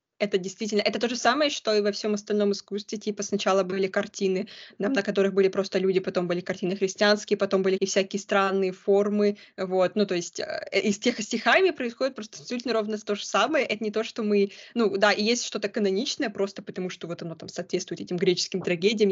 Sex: female